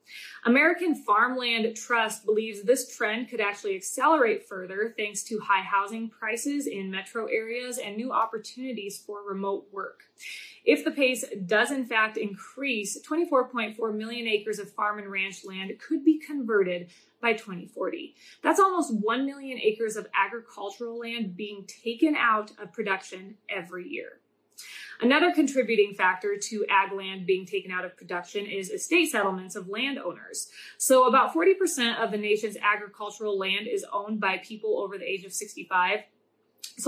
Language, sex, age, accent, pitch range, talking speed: English, female, 20-39, American, 200-260 Hz, 150 wpm